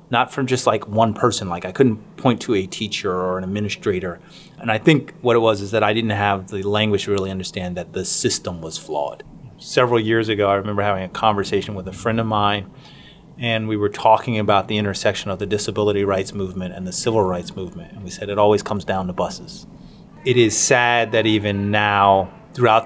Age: 30-49